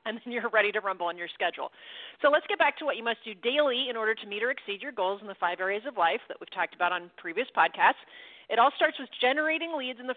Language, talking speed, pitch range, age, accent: English, 285 wpm, 200-275 Hz, 40-59, American